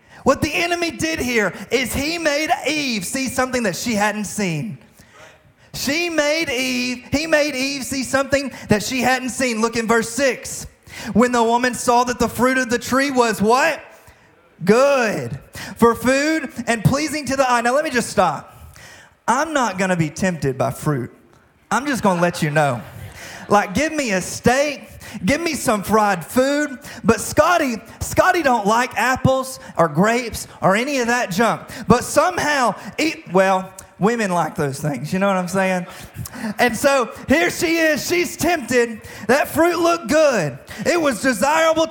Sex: male